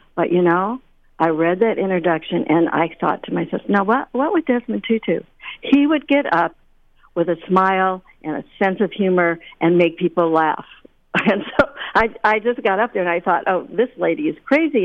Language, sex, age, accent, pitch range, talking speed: English, female, 60-79, American, 165-215 Hz, 205 wpm